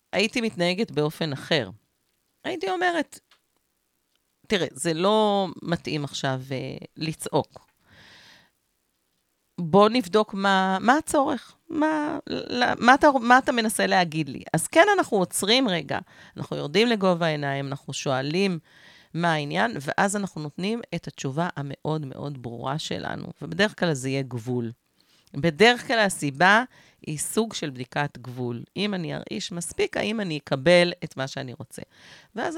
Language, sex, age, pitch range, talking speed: Hebrew, female, 40-59, 150-210 Hz, 135 wpm